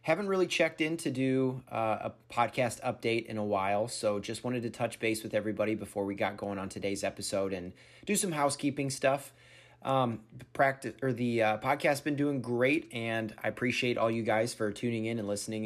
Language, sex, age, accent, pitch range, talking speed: English, male, 30-49, American, 110-125 Hz, 205 wpm